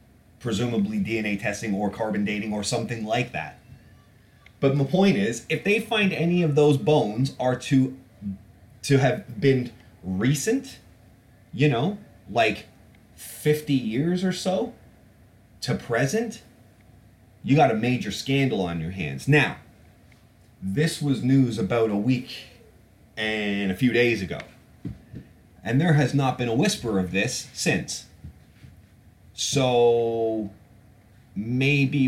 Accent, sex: American, male